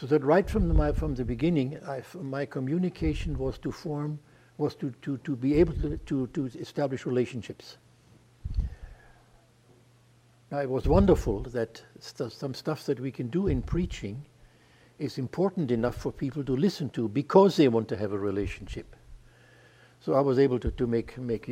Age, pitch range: 60-79, 120-150 Hz